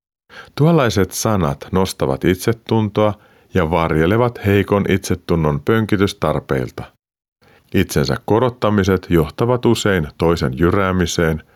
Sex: male